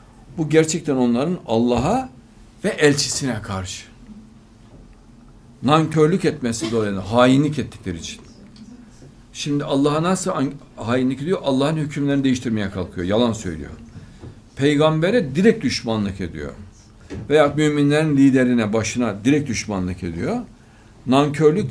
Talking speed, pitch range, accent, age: 100 wpm, 110-140 Hz, native, 60-79